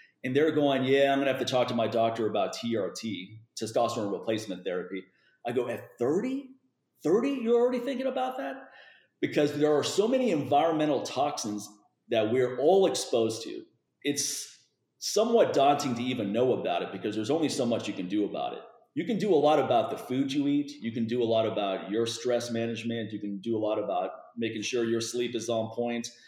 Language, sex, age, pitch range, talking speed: English, male, 30-49, 110-145 Hz, 205 wpm